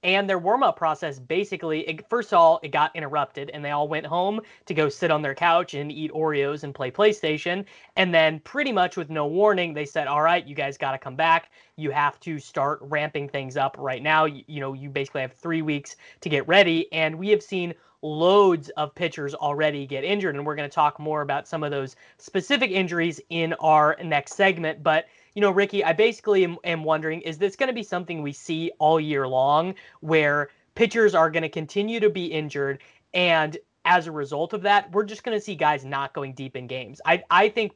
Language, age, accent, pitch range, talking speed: English, 20-39, American, 145-175 Hz, 220 wpm